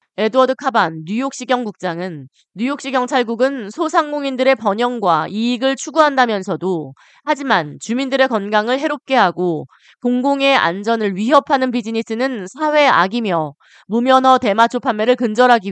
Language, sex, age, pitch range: Korean, female, 20-39, 190-265 Hz